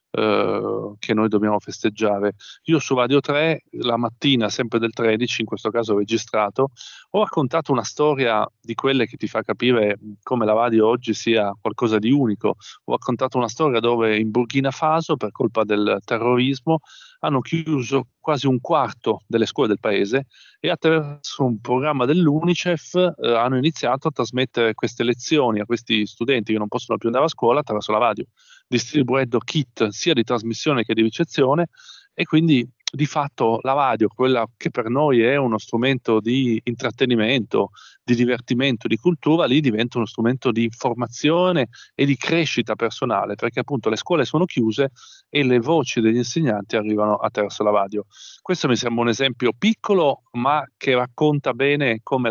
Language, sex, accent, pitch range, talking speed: Italian, male, native, 115-140 Hz, 165 wpm